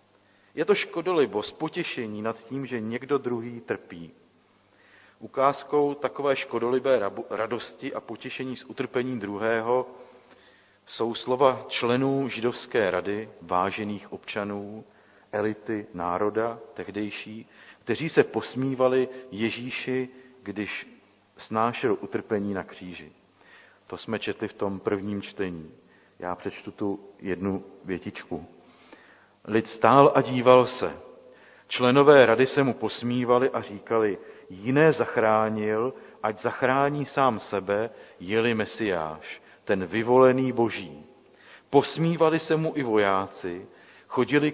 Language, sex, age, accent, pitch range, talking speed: Czech, male, 40-59, native, 105-135 Hz, 105 wpm